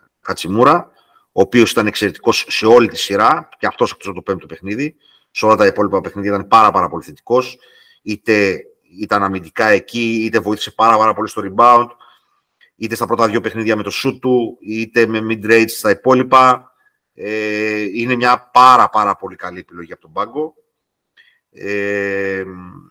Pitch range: 100-125 Hz